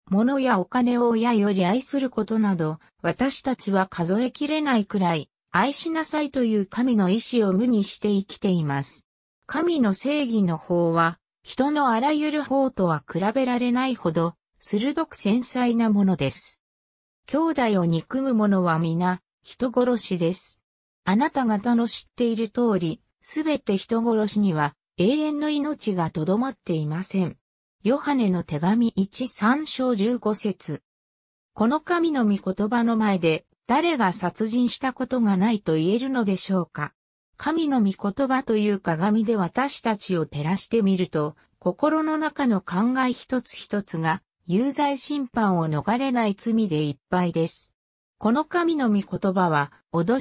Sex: female